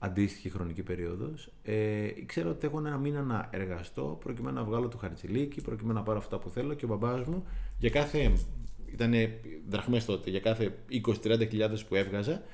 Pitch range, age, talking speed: 100-125 Hz, 30-49, 170 wpm